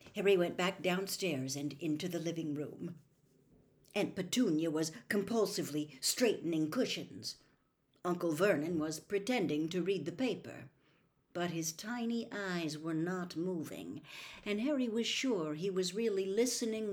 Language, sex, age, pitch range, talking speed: English, female, 60-79, 150-210 Hz, 135 wpm